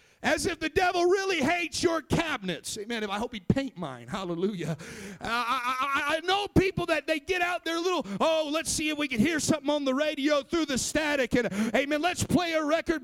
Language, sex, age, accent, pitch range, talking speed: English, male, 40-59, American, 255-330 Hz, 210 wpm